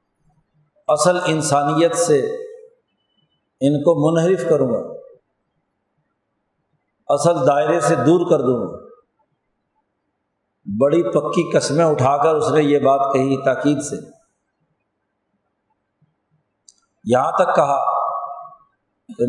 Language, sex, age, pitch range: Urdu, male, 50-69, 150-170 Hz